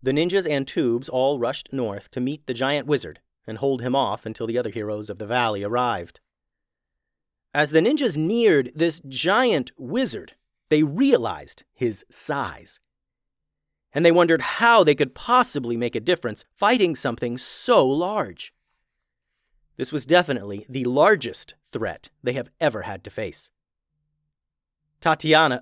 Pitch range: 125-155 Hz